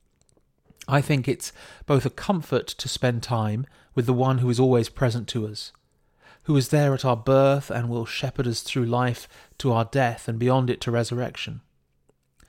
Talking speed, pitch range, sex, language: 185 wpm, 115-140 Hz, male, English